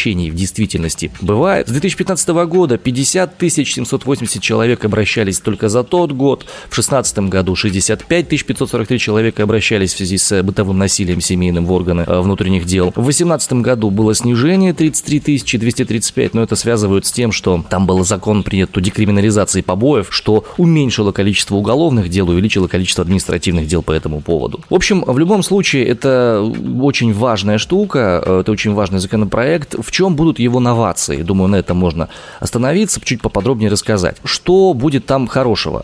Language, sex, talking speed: Russian, male, 155 wpm